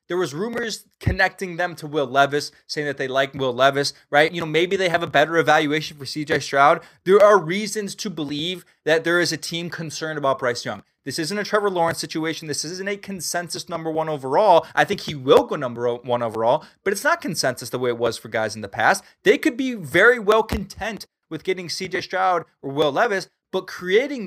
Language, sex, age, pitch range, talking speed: English, male, 20-39, 155-210 Hz, 220 wpm